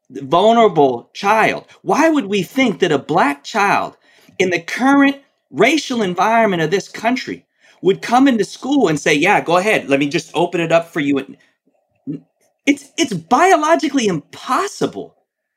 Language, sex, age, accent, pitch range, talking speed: English, male, 40-59, American, 150-230 Hz, 150 wpm